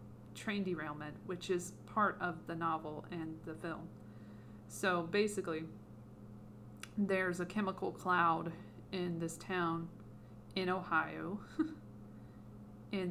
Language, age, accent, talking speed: English, 40-59, American, 105 wpm